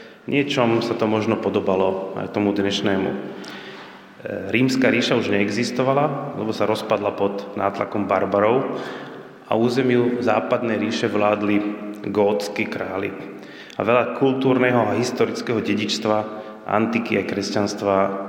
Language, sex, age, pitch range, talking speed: Slovak, male, 30-49, 100-115 Hz, 110 wpm